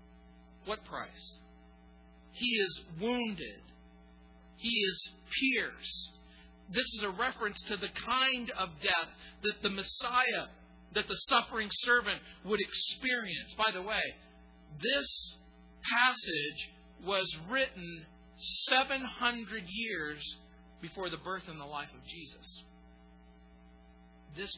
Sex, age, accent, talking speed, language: male, 50-69, American, 105 wpm, English